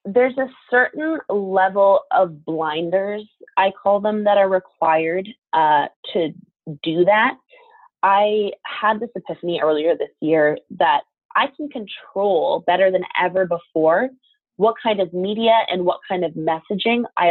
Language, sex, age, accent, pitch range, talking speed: English, female, 20-39, American, 165-220 Hz, 140 wpm